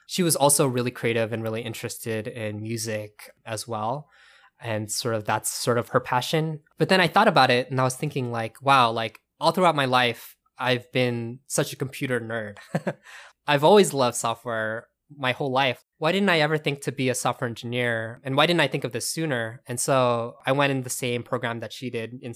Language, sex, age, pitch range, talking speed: English, male, 20-39, 115-135 Hz, 215 wpm